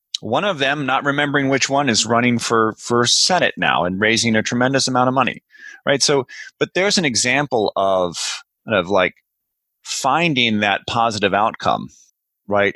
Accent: American